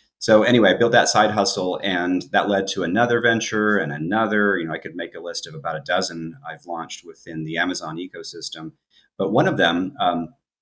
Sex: male